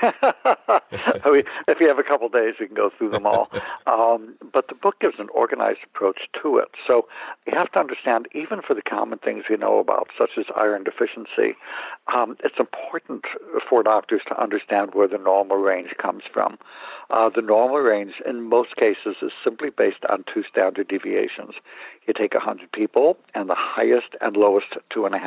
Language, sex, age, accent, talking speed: English, male, 60-79, American, 190 wpm